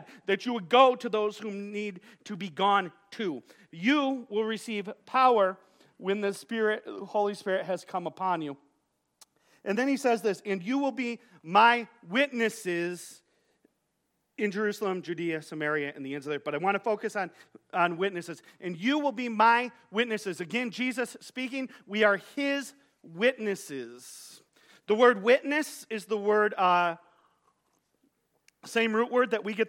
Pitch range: 185-235 Hz